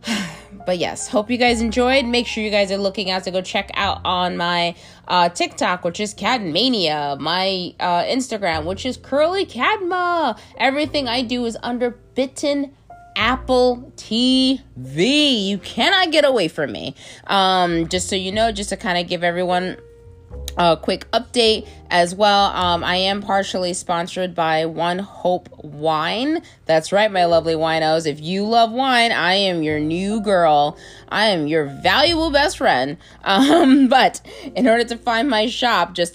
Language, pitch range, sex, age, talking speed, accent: English, 170-235 Hz, female, 20-39, 165 wpm, American